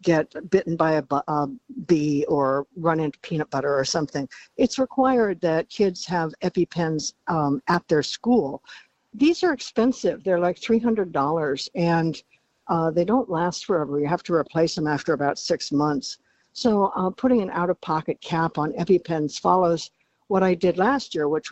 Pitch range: 150-180 Hz